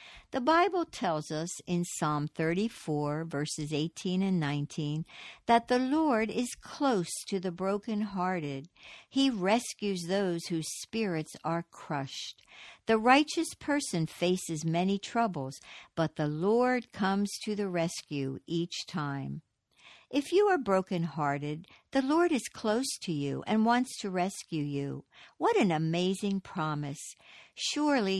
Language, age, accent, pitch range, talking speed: English, 60-79, American, 160-235 Hz, 130 wpm